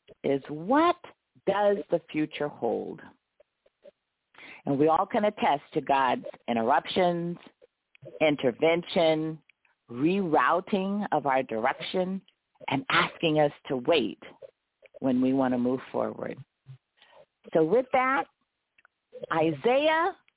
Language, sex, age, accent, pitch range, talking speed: English, female, 50-69, American, 150-215 Hz, 100 wpm